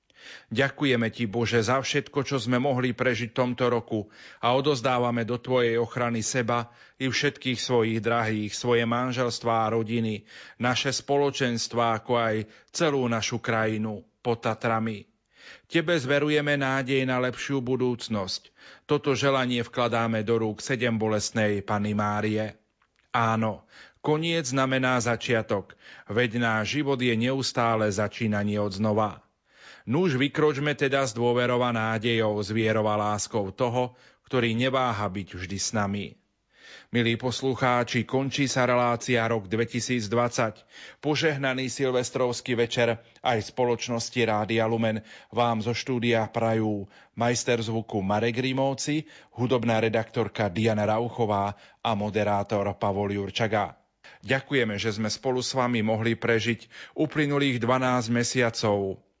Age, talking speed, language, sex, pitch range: 40-59, 120 wpm, Slovak, male, 110-130 Hz